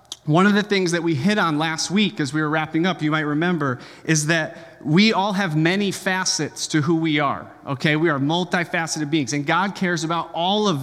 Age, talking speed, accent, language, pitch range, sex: 30-49, 220 wpm, American, English, 155-185 Hz, male